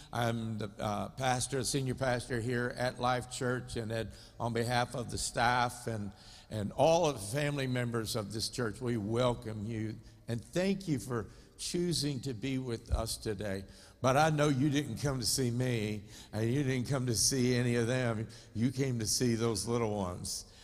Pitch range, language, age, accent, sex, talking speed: 115-135 Hz, English, 60-79, American, male, 185 wpm